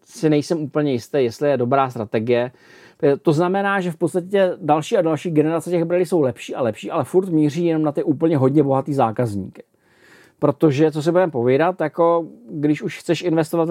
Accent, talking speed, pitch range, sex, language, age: native, 190 wpm, 140-175 Hz, male, Czech, 40-59